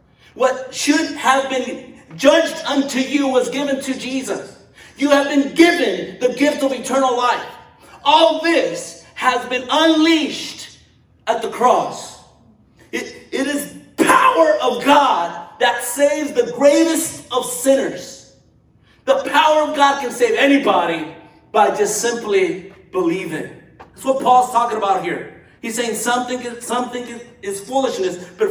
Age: 40-59